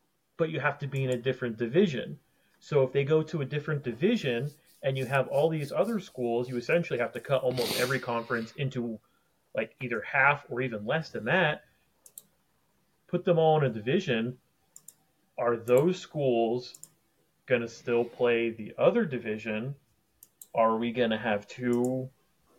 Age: 30-49